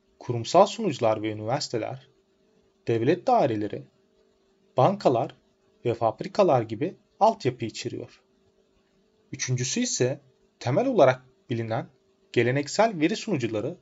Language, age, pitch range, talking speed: Turkish, 30-49, 125-195 Hz, 85 wpm